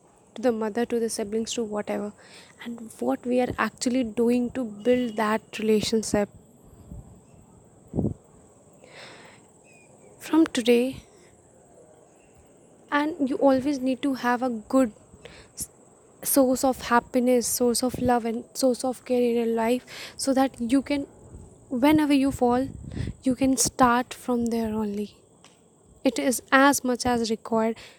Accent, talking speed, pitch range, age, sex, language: Indian, 130 wpm, 230-265 Hz, 10-29, female, English